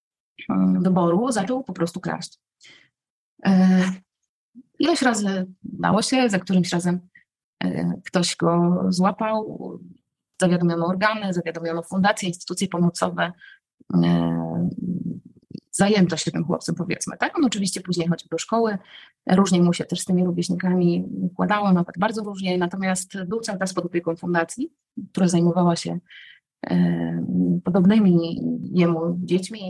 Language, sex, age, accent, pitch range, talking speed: Polish, female, 30-49, native, 170-195 Hz, 115 wpm